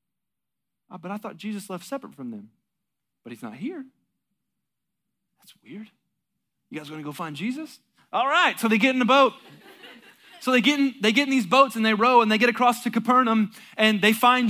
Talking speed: 215 wpm